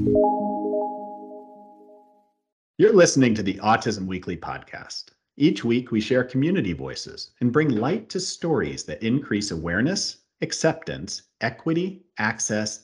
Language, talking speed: English, 110 wpm